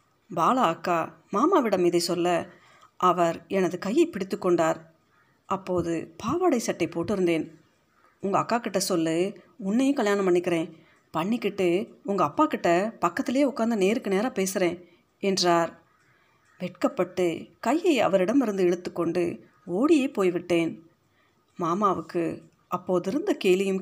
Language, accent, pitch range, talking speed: Tamil, native, 170-215 Hz, 105 wpm